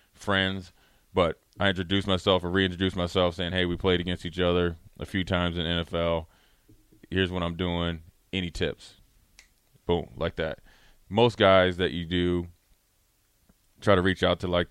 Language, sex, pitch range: English, male, 85-90 Hz